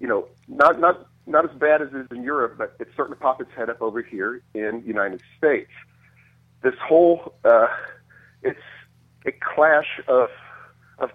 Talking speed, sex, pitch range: 185 wpm, male, 130-190 Hz